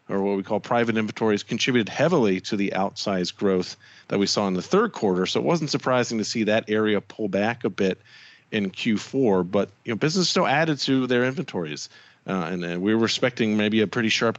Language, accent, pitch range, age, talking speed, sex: English, American, 100-120 Hz, 40-59, 215 wpm, male